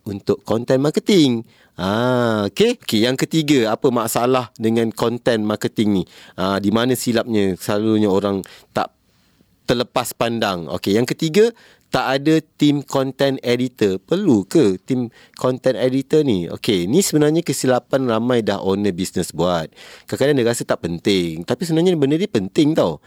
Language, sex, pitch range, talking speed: Malay, male, 100-145 Hz, 150 wpm